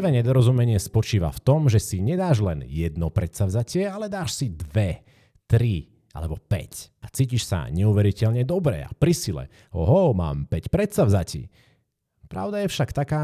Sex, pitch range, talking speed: male, 90-135 Hz, 150 wpm